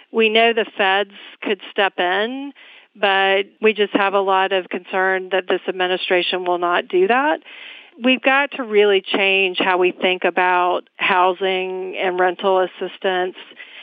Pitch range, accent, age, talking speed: 185-220 Hz, American, 40-59, 150 wpm